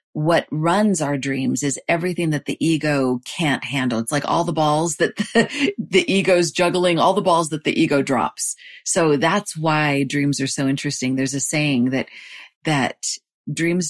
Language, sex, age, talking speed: English, female, 40-59, 175 wpm